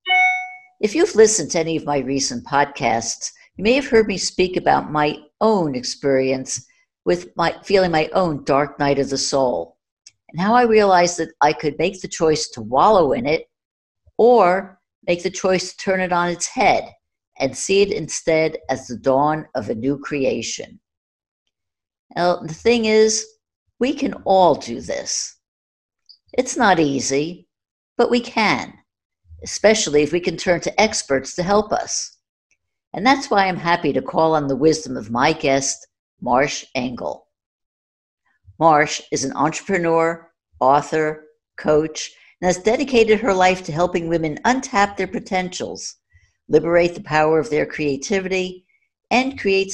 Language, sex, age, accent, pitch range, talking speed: English, female, 60-79, American, 140-200 Hz, 155 wpm